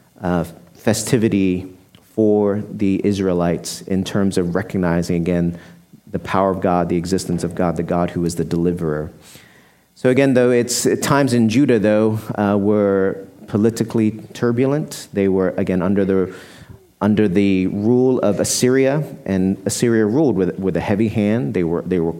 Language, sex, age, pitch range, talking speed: English, male, 40-59, 95-120 Hz, 155 wpm